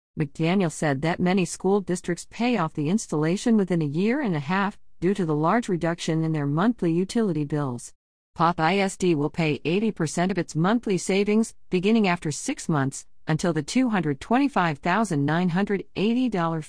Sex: female